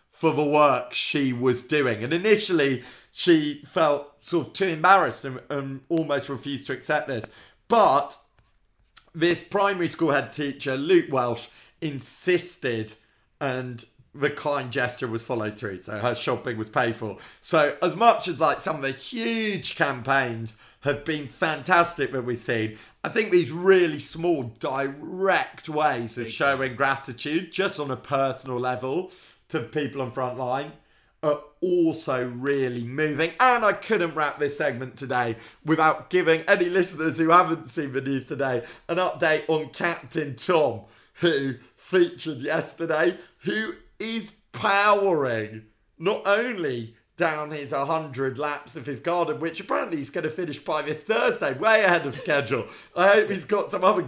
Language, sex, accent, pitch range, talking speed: English, male, British, 130-170 Hz, 155 wpm